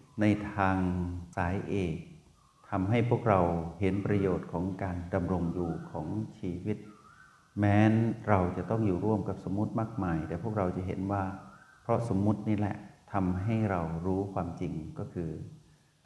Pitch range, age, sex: 95-110 Hz, 60-79, male